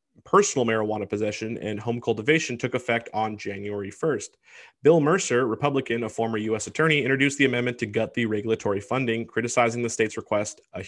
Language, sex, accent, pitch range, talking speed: English, male, American, 105-125 Hz, 170 wpm